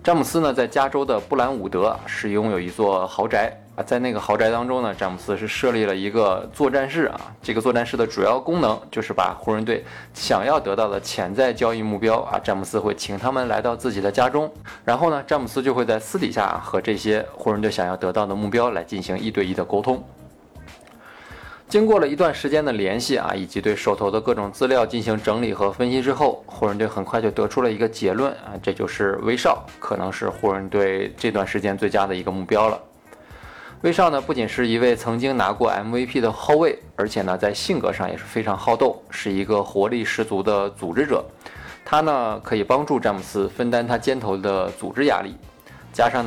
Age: 20-39